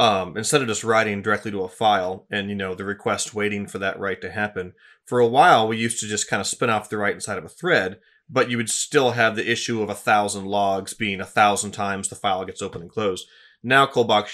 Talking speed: 250 wpm